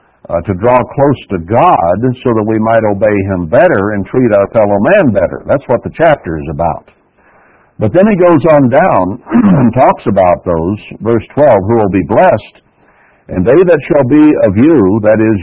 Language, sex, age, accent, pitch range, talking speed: English, male, 60-79, American, 100-140 Hz, 195 wpm